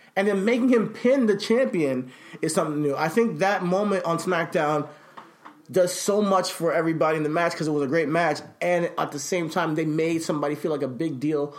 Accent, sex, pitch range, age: American, male, 145-180 Hz, 20-39